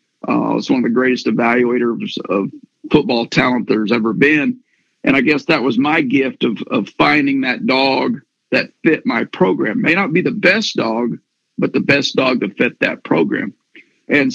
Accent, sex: American, male